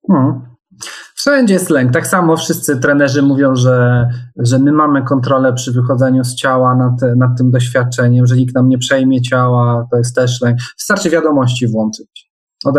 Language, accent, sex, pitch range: Polish, native, male, 125-165 Hz